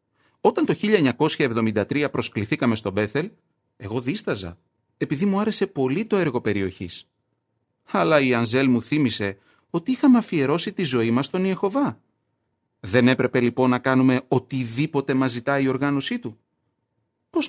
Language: Greek